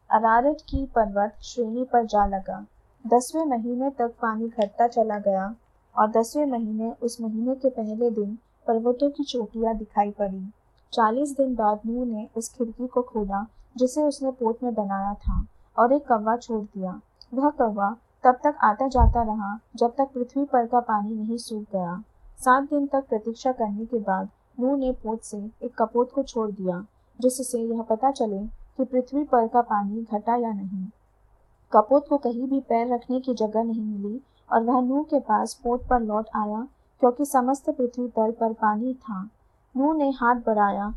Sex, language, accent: female, Hindi, native